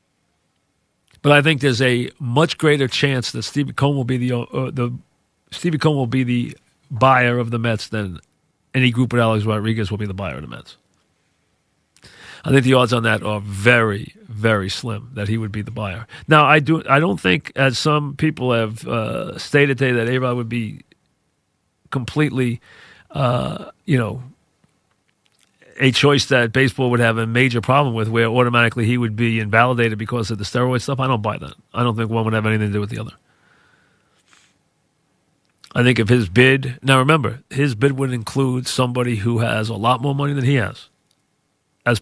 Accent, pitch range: American, 115-135 Hz